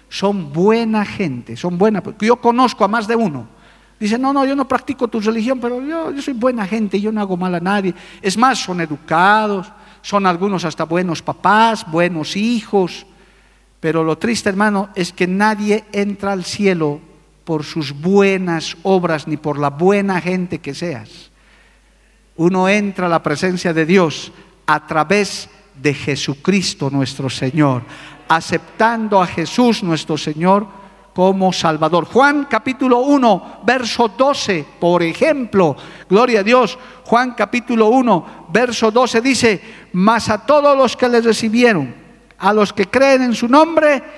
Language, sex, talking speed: Spanish, male, 155 wpm